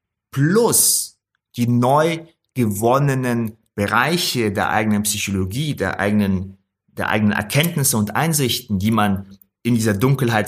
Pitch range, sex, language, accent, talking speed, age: 100-120 Hz, male, German, German, 110 wpm, 30-49